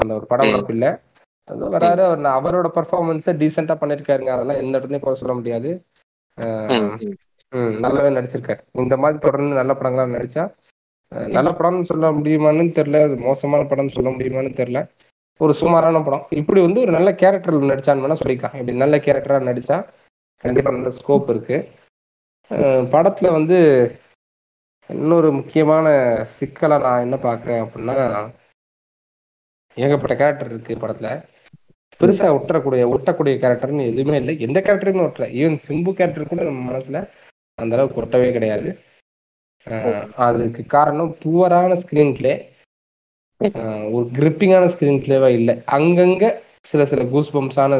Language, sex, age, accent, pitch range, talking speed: Tamil, male, 20-39, native, 125-160 Hz, 120 wpm